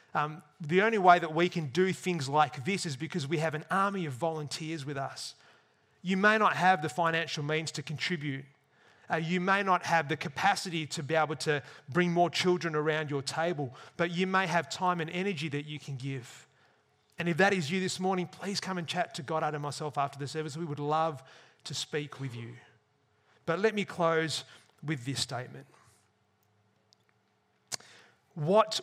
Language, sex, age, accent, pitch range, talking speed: English, male, 30-49, Australian, 150-190 Hz, 190 wpm